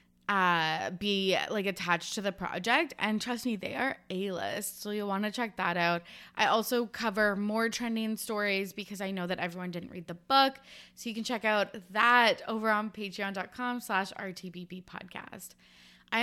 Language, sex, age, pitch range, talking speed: English, female, 20-39, 180-220 Hz, 175 wpm